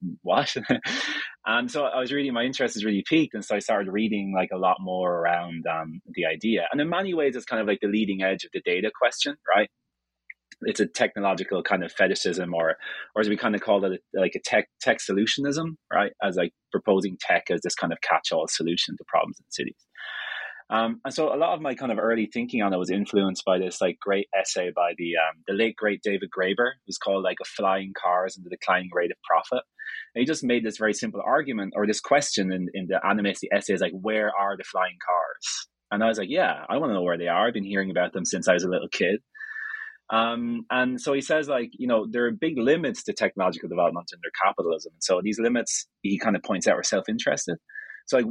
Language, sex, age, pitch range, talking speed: English, male, 30-49, 95-130 Hz, 240 wpm